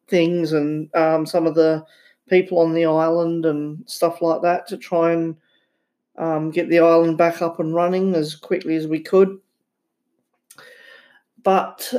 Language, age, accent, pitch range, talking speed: English, 40-59, Australian, 155-180 Hz, 155 wpm